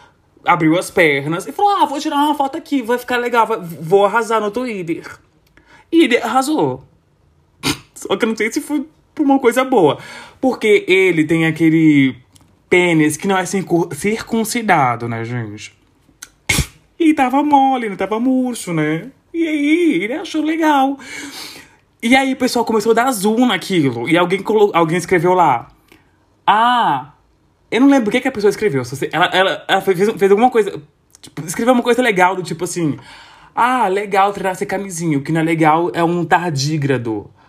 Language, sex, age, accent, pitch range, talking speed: Portuguese, male, 20-39, Brazilian, 155-250 Hz, 175 wpm